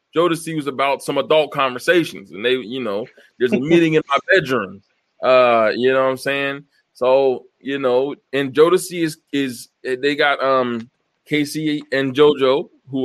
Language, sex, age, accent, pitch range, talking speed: English, male, 20-39, American, 120-150 Hz, 165 wpm